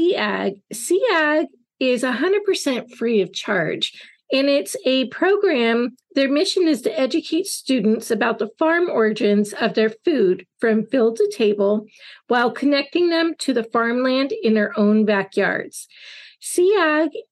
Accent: American